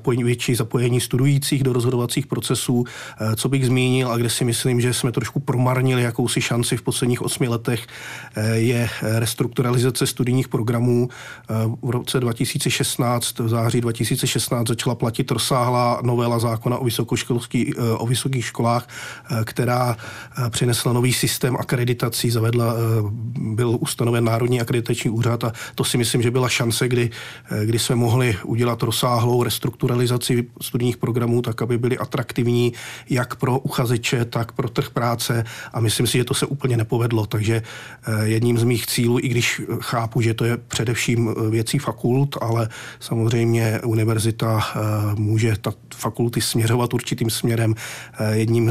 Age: 40-59